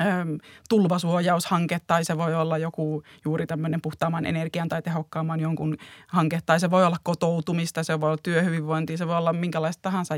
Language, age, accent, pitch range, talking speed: Finnish, 30-49, native, 155-180 Hz, 165 wpm